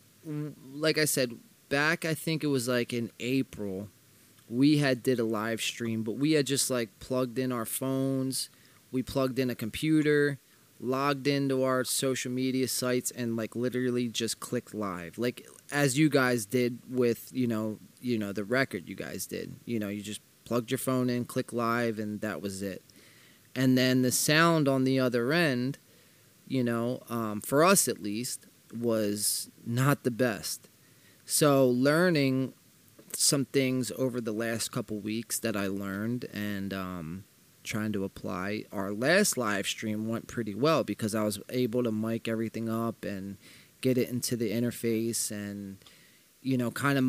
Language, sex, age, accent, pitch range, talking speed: English, male, 20-39, American, 110-135 Hz, 170 wpm